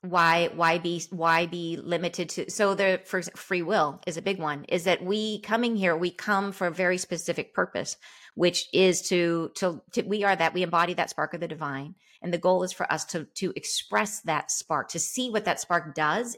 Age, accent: 40-59, American